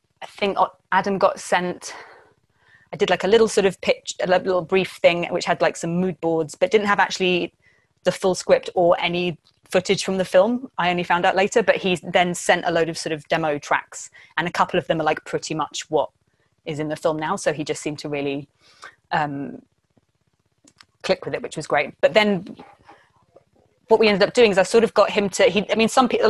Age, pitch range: 20-39, 165-190 Hz